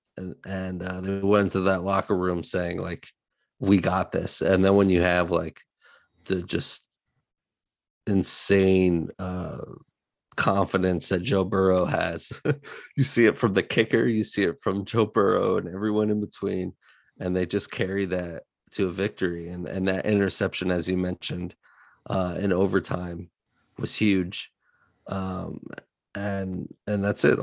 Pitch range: 90-100 Hz